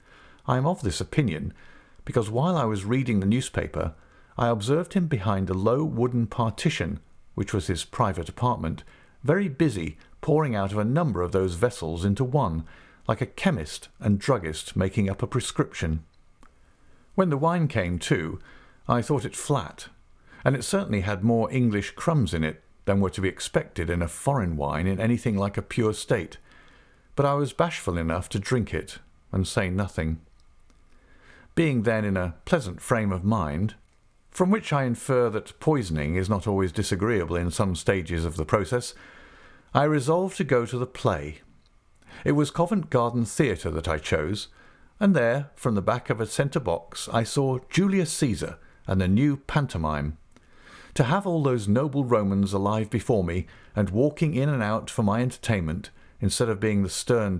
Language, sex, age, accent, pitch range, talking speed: English, male, 50-69, British, 90-130 Hz, 175 wpm